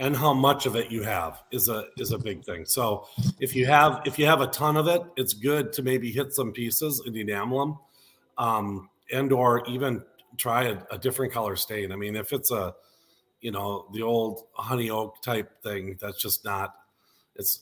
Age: 40-59